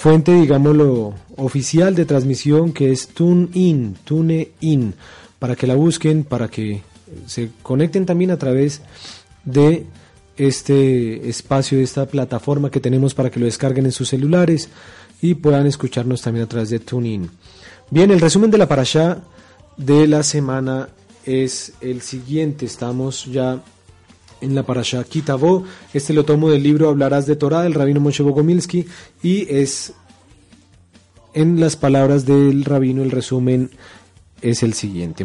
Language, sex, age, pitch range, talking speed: Spanish, male, 30-49, 125-155 Hz, 145 wpm